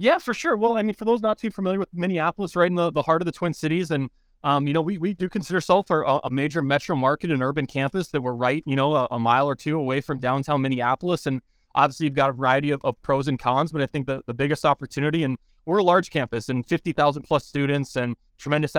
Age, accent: 20-39, American